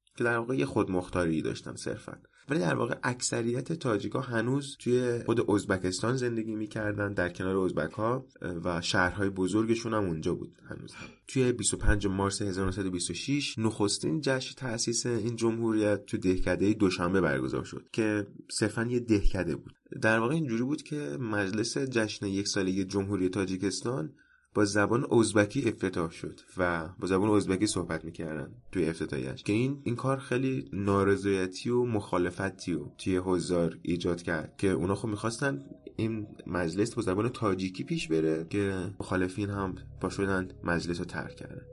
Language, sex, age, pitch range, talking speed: Persian, male, 30-49, 95-120 Hz, 150 wpm